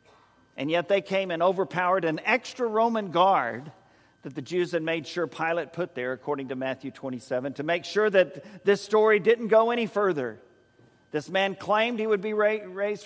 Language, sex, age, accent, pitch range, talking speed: English, male, 50-69, American, 130-190 Hz, 185 wpm